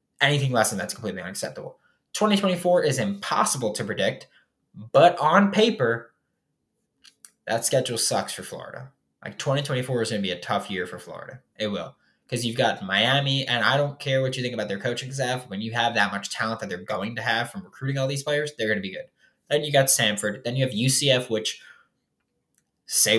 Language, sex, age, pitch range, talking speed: English, male, 10-29, 105-135 Hz, 200 wpm